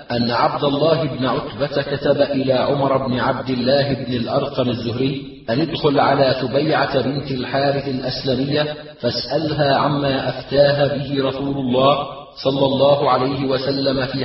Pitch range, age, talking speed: 135-145 Hz, 40-59, 135 wpm